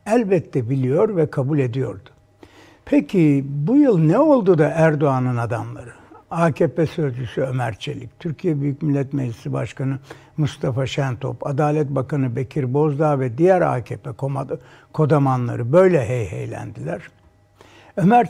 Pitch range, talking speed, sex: 135-180 Hz, 115 wpm, male